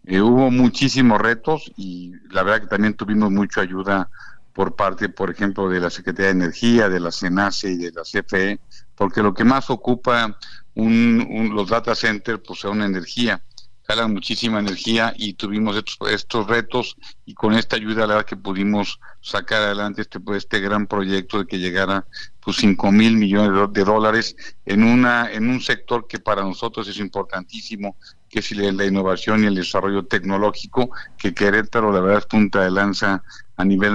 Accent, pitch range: Mexican, 95-110 Hz